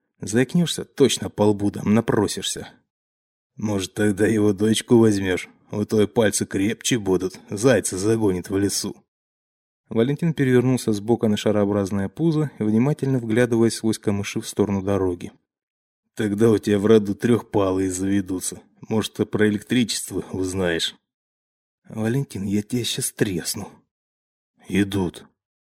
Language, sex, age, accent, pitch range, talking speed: Russian, male, 20-39, native, 100-125 Hz, 115 wpm